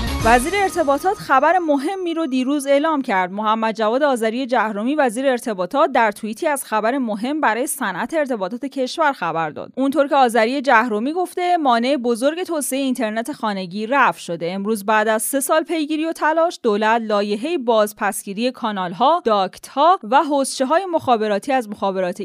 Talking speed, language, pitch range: 155 wpm, Persian, 215-305 Hz